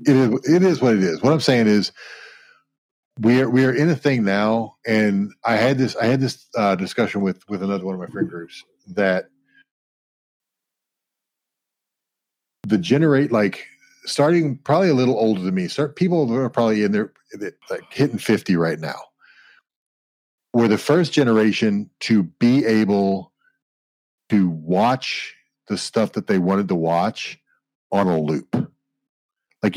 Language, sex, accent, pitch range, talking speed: English, male, American, 100-130 Hz, 160 wpm